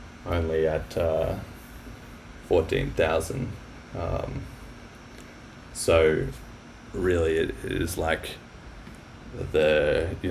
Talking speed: 70 wpm